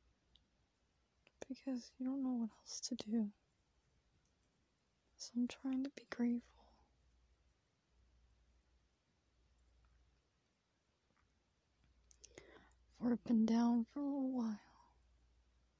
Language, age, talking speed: English, 20-39, 85 wpm